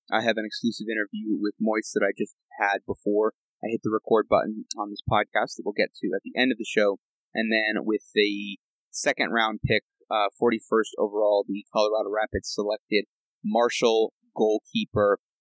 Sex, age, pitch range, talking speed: male, 20-39, 105-115 Hz, 180 wpm